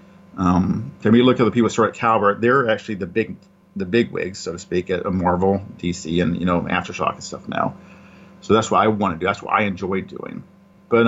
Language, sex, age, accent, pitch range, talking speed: English, male, 40-59, American, 100-115 Hz, 225 wpm